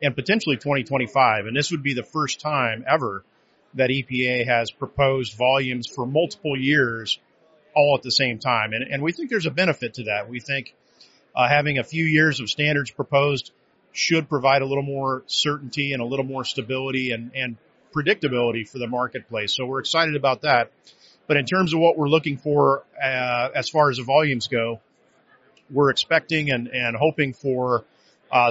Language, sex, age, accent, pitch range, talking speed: English, male, 40-59, American, 125-145 Hz, 185 wpm